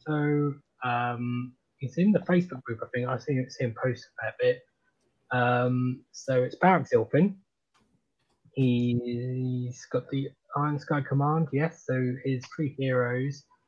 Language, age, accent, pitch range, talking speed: English, 20-39, British, 125-150 Hz, 140 wpm